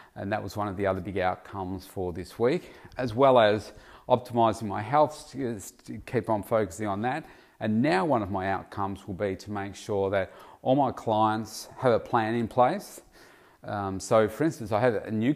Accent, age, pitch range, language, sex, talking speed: Australian, 40-59, 100-120 Hz, English, male, 205 wpm